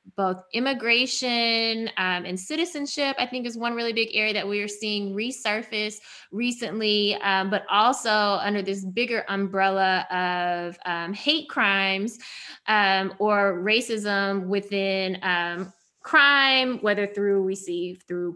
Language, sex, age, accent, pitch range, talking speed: English, female, 20-39, American, 195-235 Hz, 130 wpm